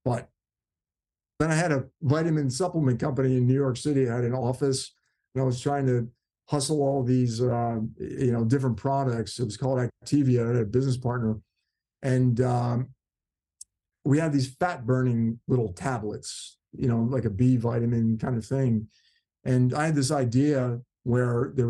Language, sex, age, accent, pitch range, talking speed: English, male, 50-69, American, 125-150 Hz, 175 wpm